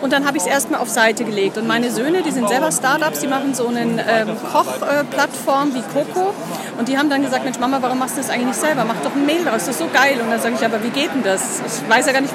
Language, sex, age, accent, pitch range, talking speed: German, female, 40-59, German, 230-285 Hz, 300 wpm